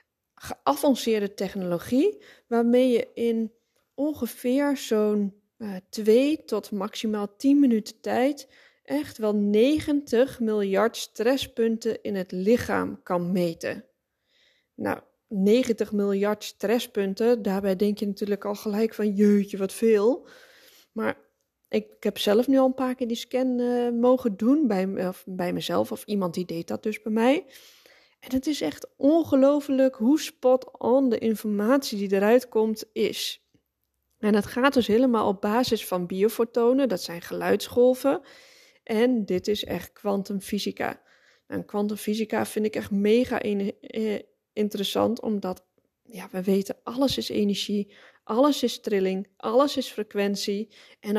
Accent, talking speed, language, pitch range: Dutch, 135 wpm, Dutch, 205-255 Hz